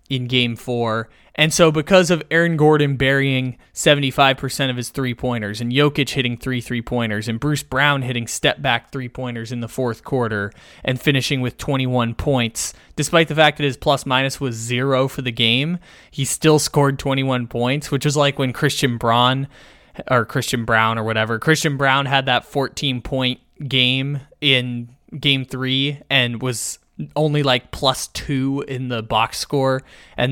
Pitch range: 120-145 Hz